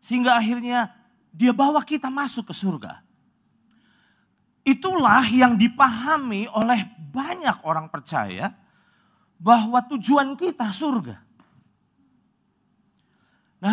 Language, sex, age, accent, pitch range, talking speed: English, male, 40-59, Indonesian, 190-245 Hz, 85 wpm